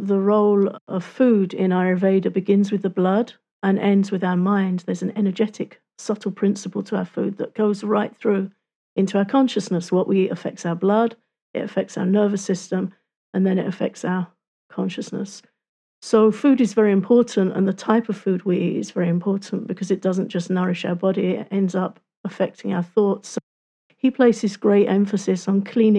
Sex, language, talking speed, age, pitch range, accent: female, English, 185 wpm, 50-69, 185-210 Hz, British